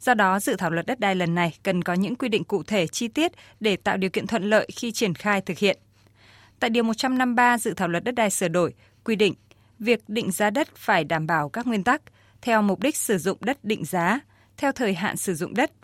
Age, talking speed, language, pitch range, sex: 20-39, 245 wpm, Vietnamese, 180-230 Hz, female